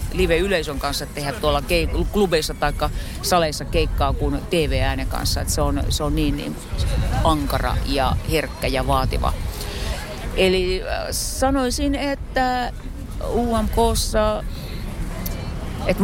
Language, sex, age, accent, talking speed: Finnish, female, 40-59, native, 100 wpm